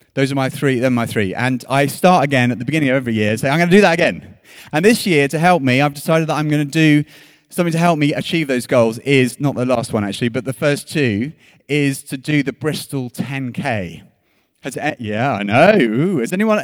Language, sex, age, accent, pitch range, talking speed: English, male, 30-49, British, 130-180 Hz, 245 wpm